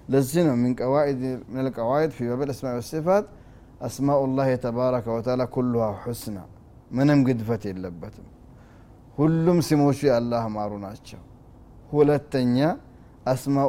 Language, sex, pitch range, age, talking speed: Amharic, male, 120-140 Hz, 30-49, 110 wpm